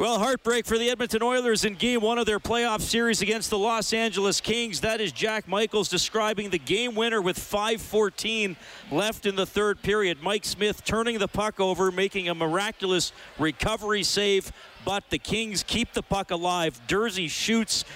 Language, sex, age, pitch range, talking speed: English, male, 50-69, 155-205 Hz, 175 wpm